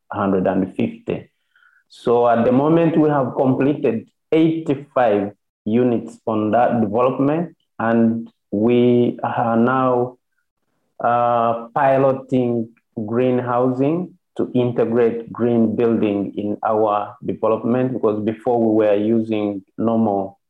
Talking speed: 100 wpm